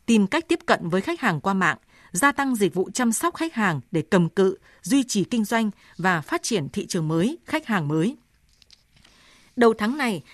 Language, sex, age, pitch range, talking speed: Vietnamese, female, 20-39, 185-245 Hz, 210 wpm